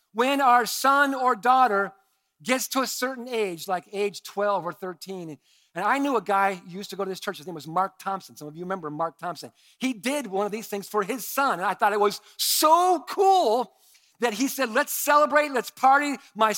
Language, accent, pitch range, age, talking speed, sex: English, American, 140-215 Hz, 50-69, 225 wpm, male